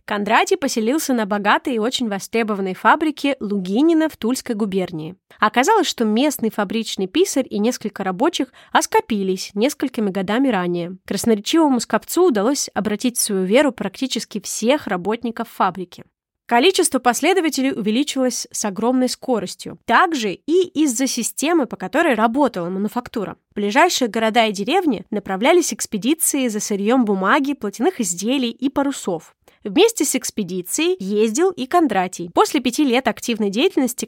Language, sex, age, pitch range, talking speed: Russian, female, 20-39, 210-285 Hz, 130 wpm